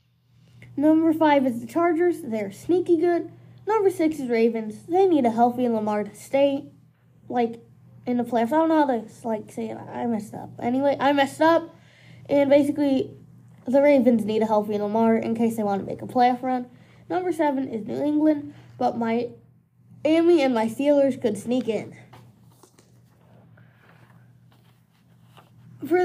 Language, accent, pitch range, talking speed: English, American, 235-330 Hz, 160 wpm